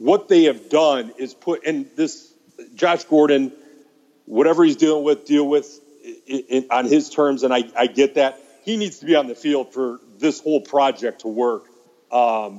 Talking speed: 195 wpm